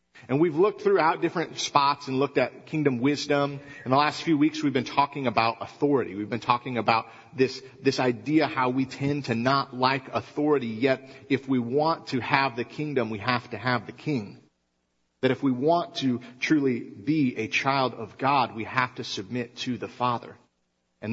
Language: English